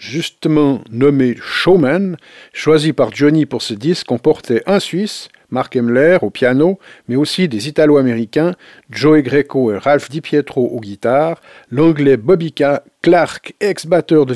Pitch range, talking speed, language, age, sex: 120-155 Hz, 140 wpm, French, 50-69, male